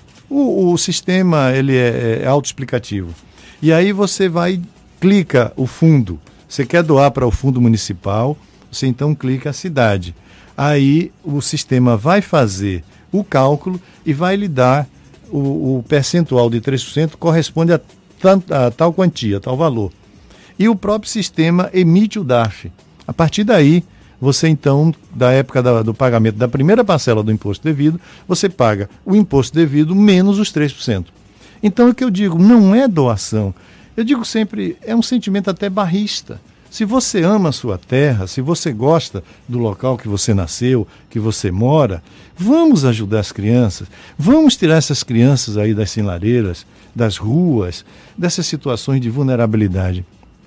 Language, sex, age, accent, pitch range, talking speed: Portuguese, male, 60-79, Brazilian, 110-175 Hz, 155 wpm